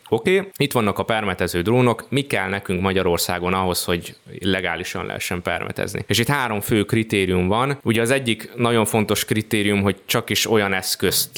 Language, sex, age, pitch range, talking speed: Hungarian, male, 20-39, 90-115 Hz, 175 wpm